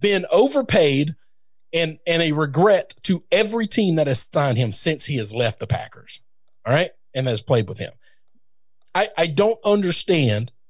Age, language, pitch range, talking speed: 40-59, English, 130-200 Hz, 175 wpm